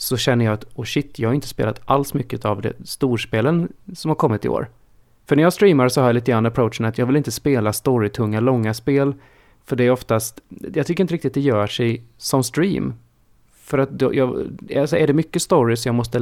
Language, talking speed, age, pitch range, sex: Swedish, 235 wpm, 30-49, 110-140 Hz, male